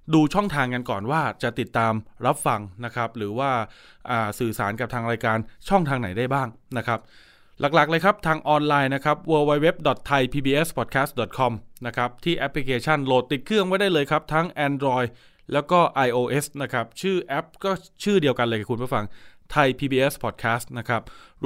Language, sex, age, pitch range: Thai, male, 20-39, 115-155 Hz